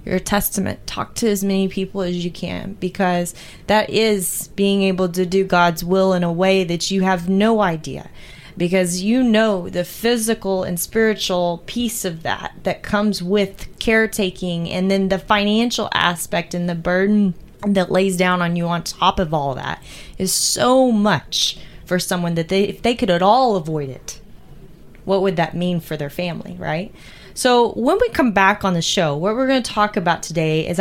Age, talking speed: 20-39, 185 wpm